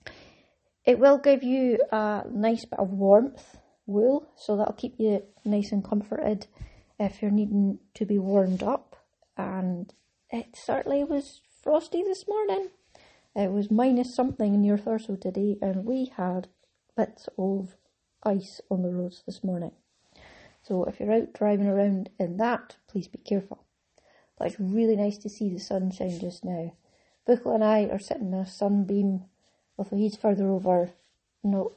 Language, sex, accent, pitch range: English, female, British, 195-230 Hz